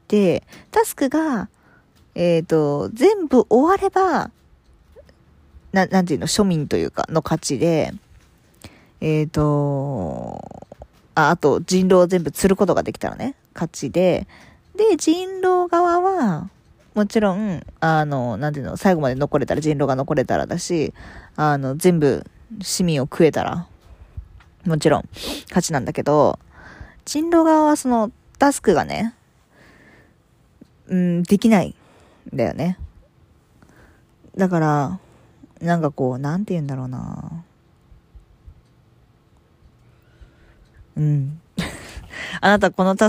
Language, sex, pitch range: Japanese, female, 145-210 Hz